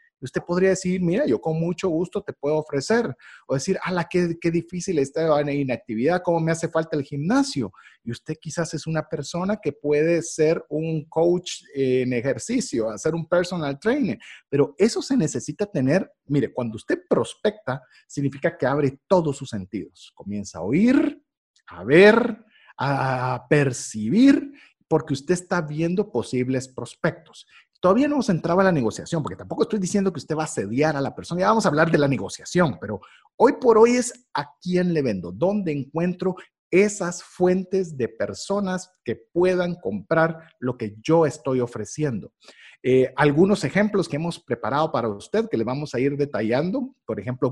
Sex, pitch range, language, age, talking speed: male, 140-190 Hz, Spanish, 40-59, 170 wpm